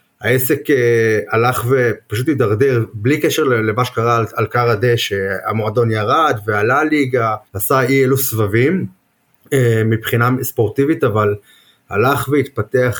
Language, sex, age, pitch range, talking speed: Hebrew, male, 30-49, 110-135 Hz, 110 wpm